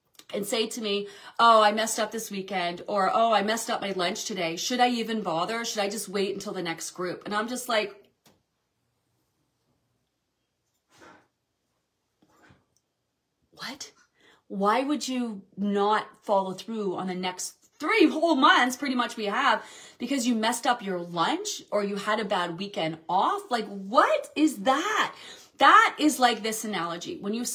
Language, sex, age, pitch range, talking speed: English, female, 30-49, 200-255 Hz, 165 wpm